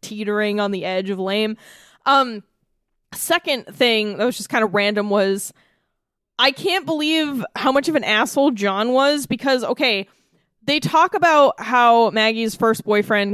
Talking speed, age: 155 wpm, 20-39